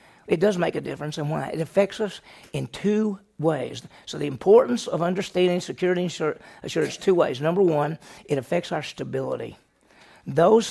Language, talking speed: English, 175 wpm